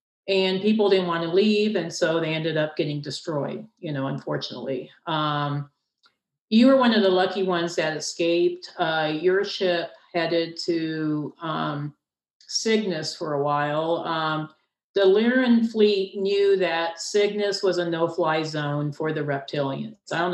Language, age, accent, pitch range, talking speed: English, 50-69, American, 155-195 Hz, 155 wpm